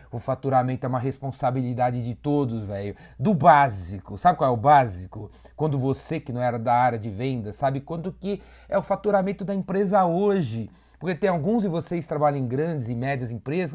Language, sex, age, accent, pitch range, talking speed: Portuguese, male, 30-49, Brazilian, 125-175 Hz, 195 wpm